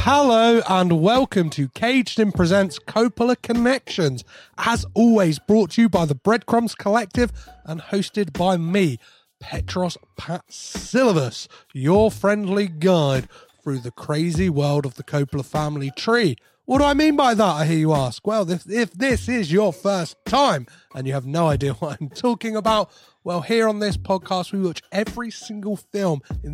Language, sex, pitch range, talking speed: English, male, 155-225 Hz, 165 wpm